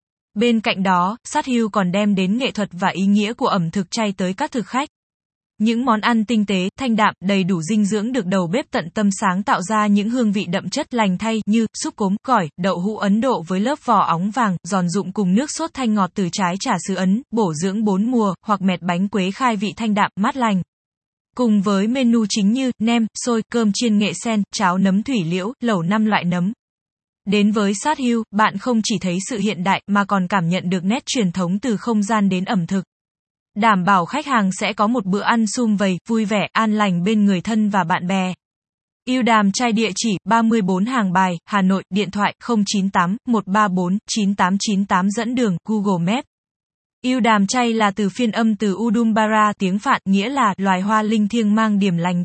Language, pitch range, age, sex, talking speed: Vietnamese, 190-230 Hz, 10-29, female, 215 wpm